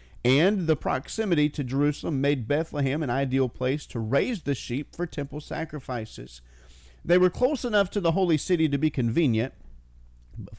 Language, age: English, 40-59